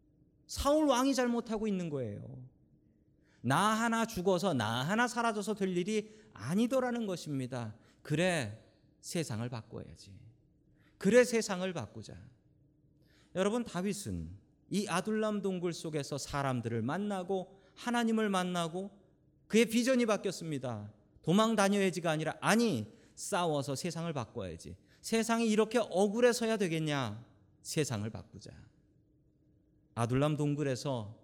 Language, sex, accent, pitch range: Korean, male, native, 120-195 Hz